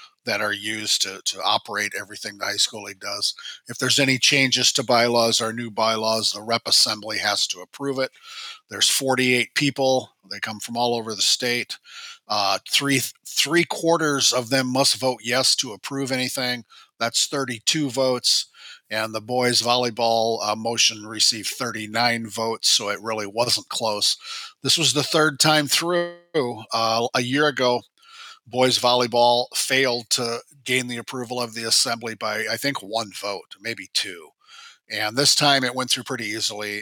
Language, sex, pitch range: English, male, 115-140 Hz